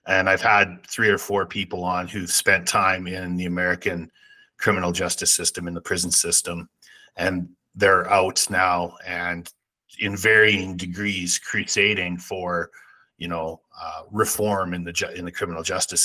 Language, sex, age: English, male, 30-49